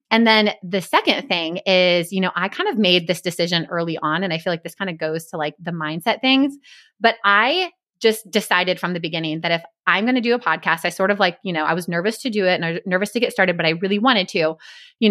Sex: female